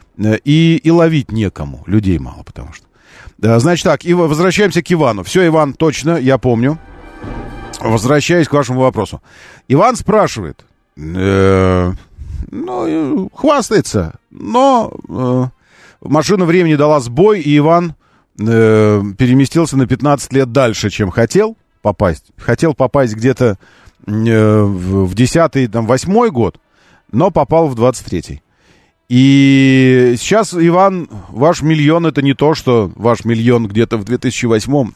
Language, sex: Russian, male